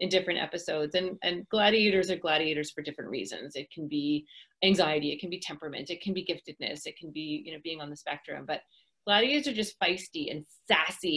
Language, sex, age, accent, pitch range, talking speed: English, female, 30-49, American, 170-210 Hz, 210 wpm